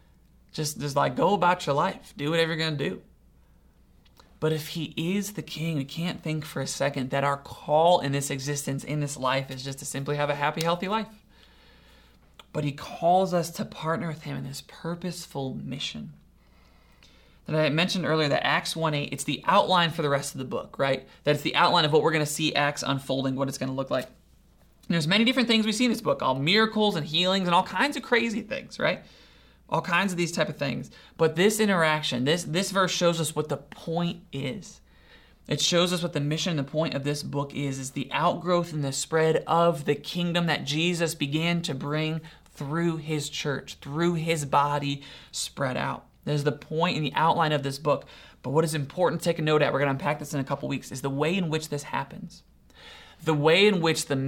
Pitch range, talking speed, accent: 140-170 Hz, 225 wpm, American